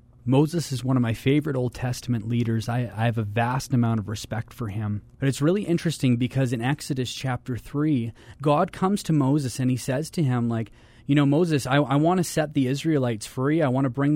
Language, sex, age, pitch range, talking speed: English, male, 30-49, 120-150 Hz, 220 wpm